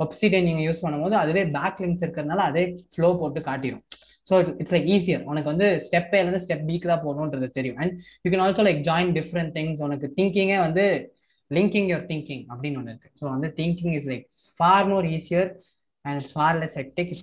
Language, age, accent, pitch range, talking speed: Tamil, 20-39, native, 140-180 Hz, 185 wpm